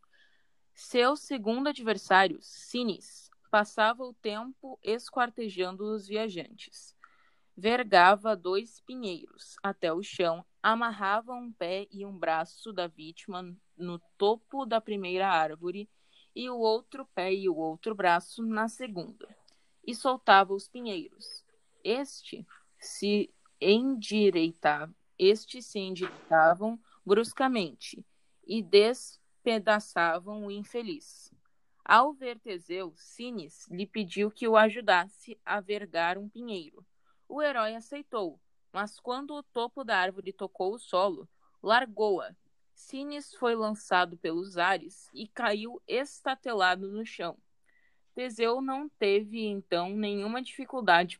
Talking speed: 115 wpm